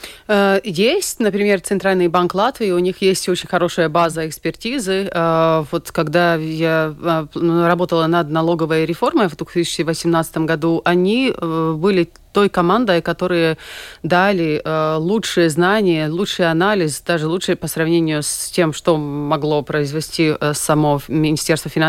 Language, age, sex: Russian, 30-49, female